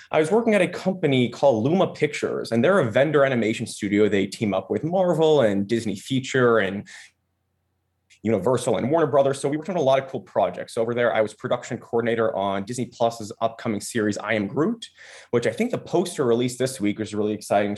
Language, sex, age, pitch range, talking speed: English, male, 20-39, 110-150 Hz, 210 wpm